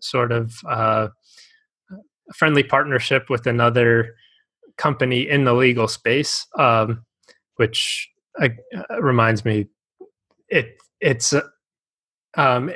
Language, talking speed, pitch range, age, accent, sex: English, 100 wpm, 110-135 Hz, 20-39, American, male